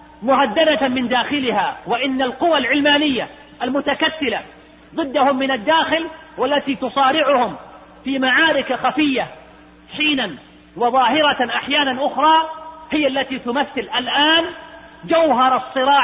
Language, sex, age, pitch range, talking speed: Arabic, male, 40-59, 170-280 Hz, 95 wpm